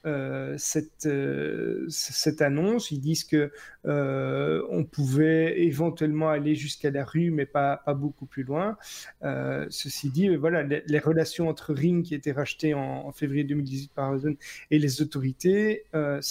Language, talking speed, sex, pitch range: French, 160 wpm, male, 140-160 Hz